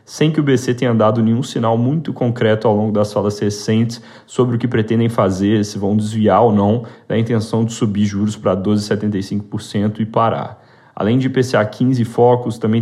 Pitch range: 105-120 Hz